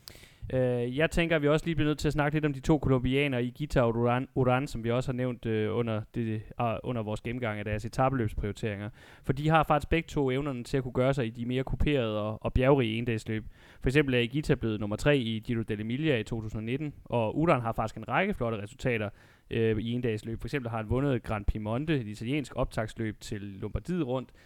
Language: Danish